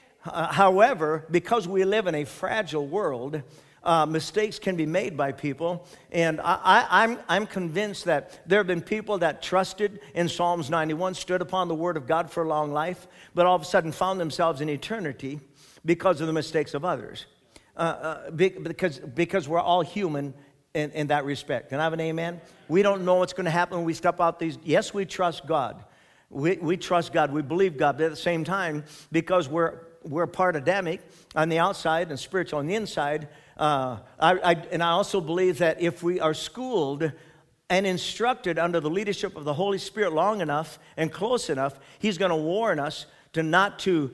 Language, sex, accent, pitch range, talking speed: English, male, American, 155-180 Hz, 205 wpm